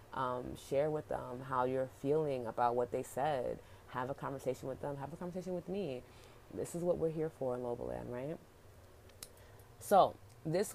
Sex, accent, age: female, American, 20-39